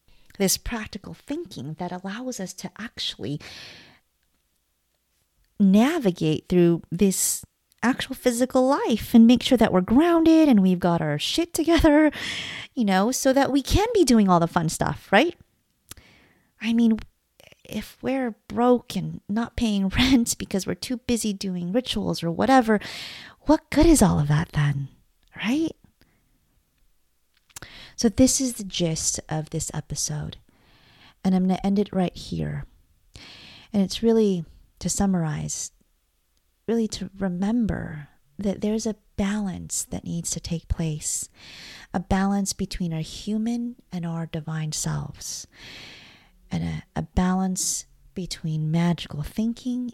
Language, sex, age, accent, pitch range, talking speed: English, female, 30-49, American, 150-225 Hz, 135 wpm